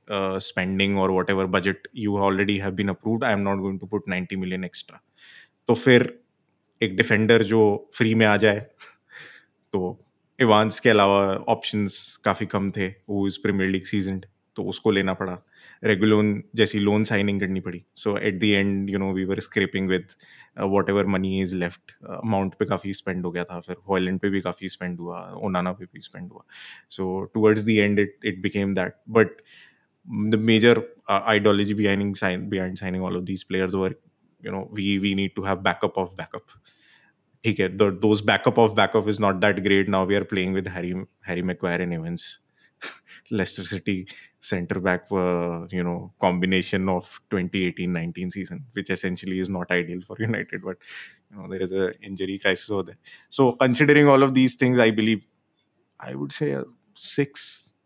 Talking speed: 145 wpm